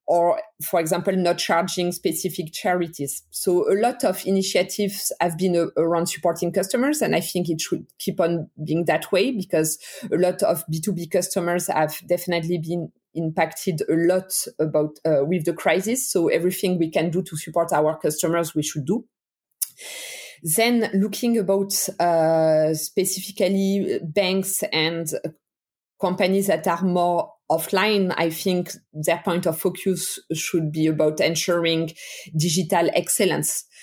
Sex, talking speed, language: female, 140 wpm, English